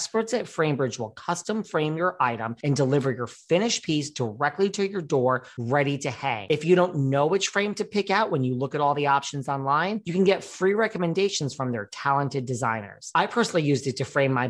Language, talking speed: English, 220 wpm